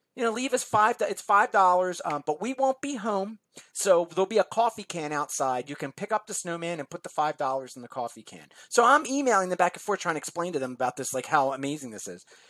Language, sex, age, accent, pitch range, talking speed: English, male, 30-49, American, 155-230 Hz, 265 wpm